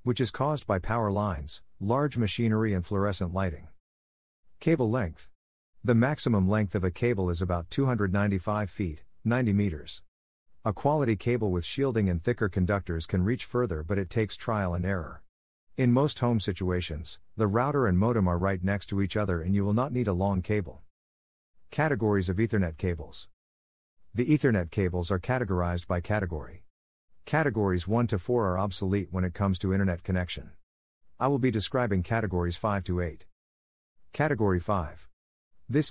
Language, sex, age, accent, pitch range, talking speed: English, male, 50-69, American, 90-115 Hz, 165 wpm